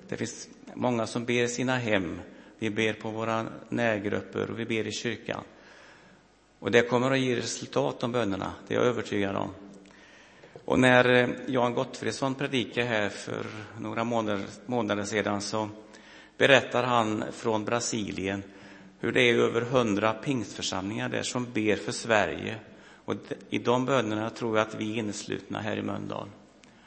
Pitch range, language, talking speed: 100-120 Hz, Swedish, 155 wpm